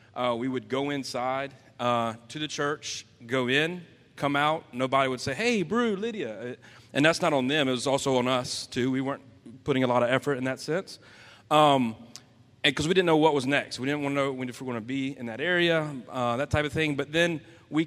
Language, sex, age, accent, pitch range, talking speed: English, male, 30-49, American, 120-145 Hz, 240 wpm